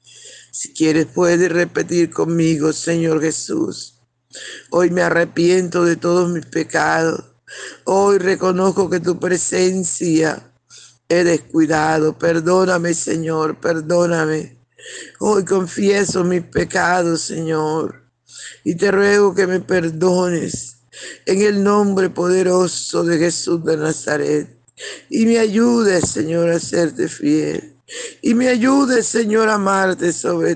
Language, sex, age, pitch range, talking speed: Spanish, male, 50-69, 155-185 Hz, 110 wpm